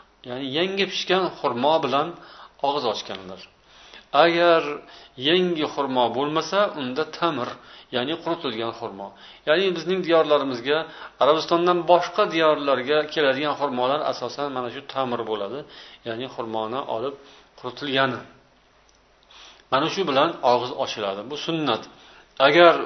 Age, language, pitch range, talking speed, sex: 50-69, Bulgarian, 115-165 Hz, 110 wpm, male